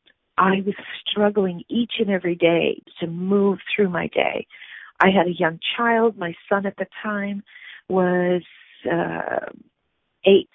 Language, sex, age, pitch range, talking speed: English, female, 40-59, 175-205 Hz, 140 wpm